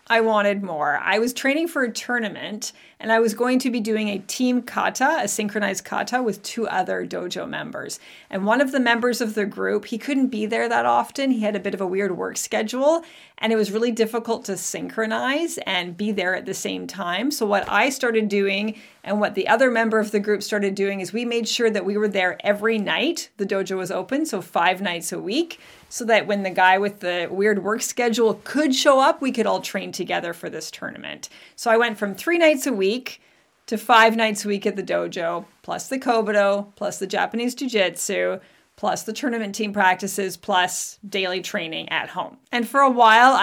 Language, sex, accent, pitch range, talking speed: English, female, American, 200-245 Hz, 215 wpm